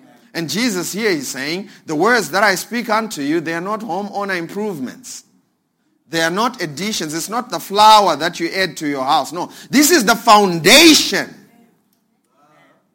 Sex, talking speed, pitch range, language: male, 165 wpm, 150-215 Hz, English